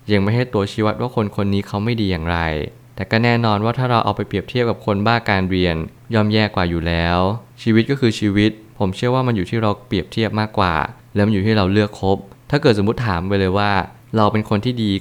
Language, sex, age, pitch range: Thai, male, 20-39, 95-115 Hz